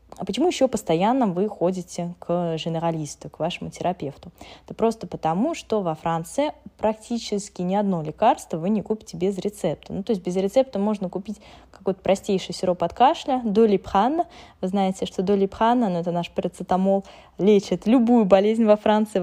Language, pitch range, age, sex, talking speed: Russian, 175-215 Hz, 10-29, female, 165 wpm